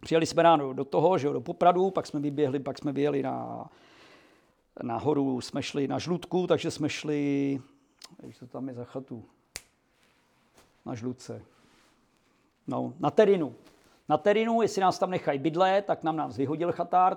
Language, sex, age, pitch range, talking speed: Czech, male, 50-69, 145-175 Hz, 160 wpm